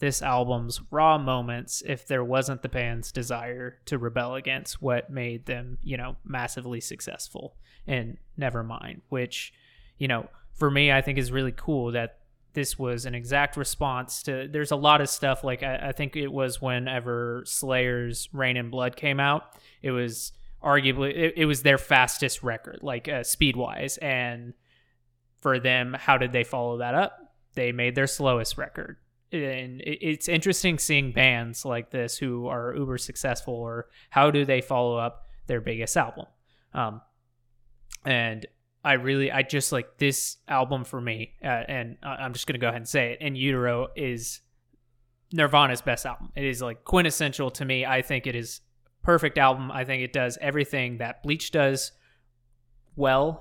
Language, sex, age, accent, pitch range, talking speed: English, male, 20-39, American, 120-140 Hz, 170 wpm